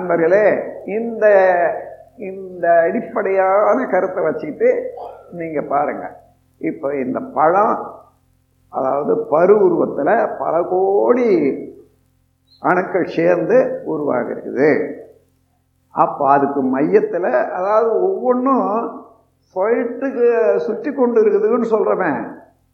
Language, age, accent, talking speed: Tamil, 50-69, native, 75 wpm